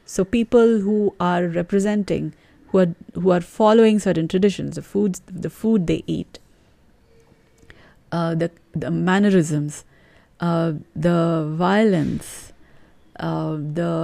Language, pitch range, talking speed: English, 165-205 Hz, 115 wpm